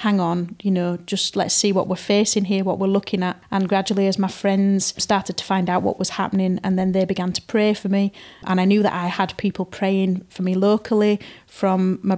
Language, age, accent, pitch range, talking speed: English, 30-49, British, 190-210 Hz, 235 wpm